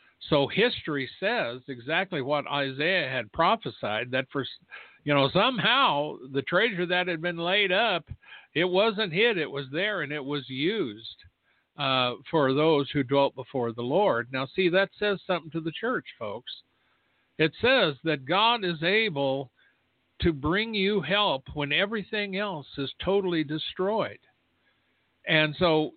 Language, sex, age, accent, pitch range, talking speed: English, male, 60-79, American, 140-190 Hz, 150 wpm